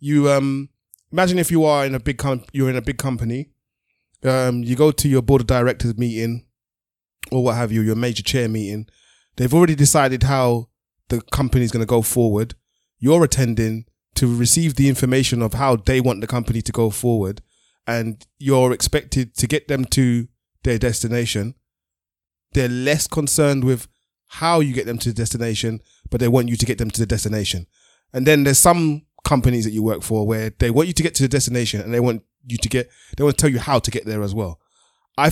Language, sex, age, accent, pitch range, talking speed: English, male, 20-39, British, 115-135 Hz, 210 wpm